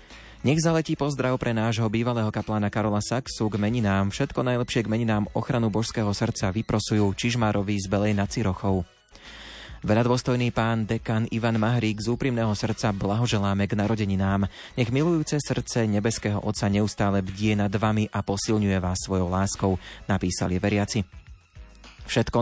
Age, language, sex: 30-49, Slovak, male